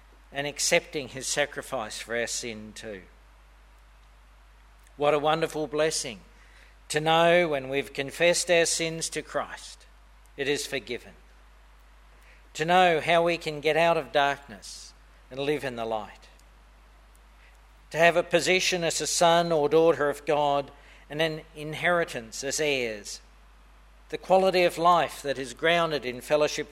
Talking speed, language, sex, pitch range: 140 wpm, English, male, 115-165 Hz